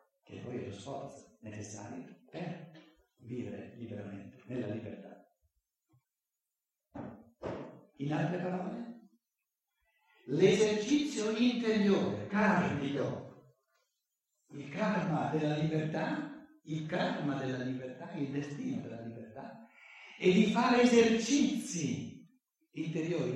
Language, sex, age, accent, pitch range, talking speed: Italian, male, 60-79, native, 150-245 Hz, 85 wpm